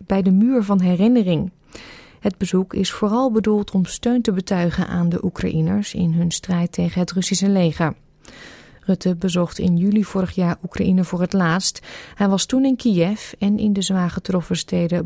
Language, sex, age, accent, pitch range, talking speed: Dutch, female, 30-49, Dutch, 175-215 Hz, 180 wpm